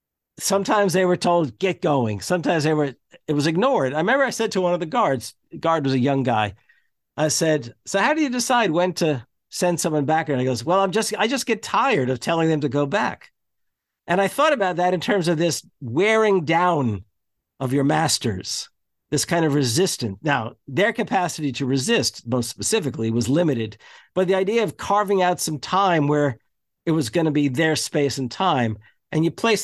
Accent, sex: American, male